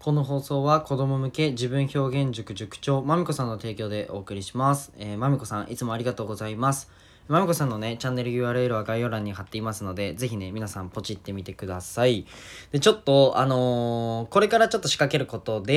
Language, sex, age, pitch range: Japanese, male, 10-29, 105-140 Hz